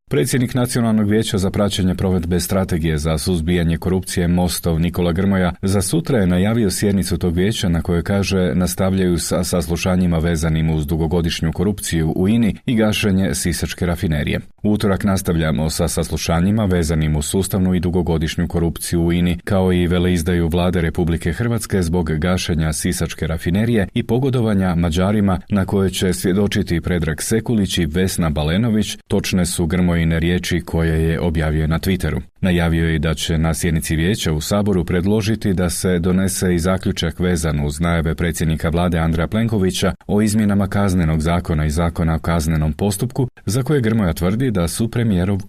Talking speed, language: 155 wpm, Croatian